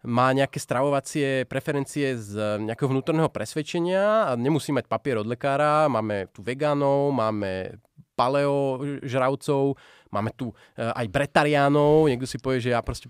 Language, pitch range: Slovak, 115-150 Hz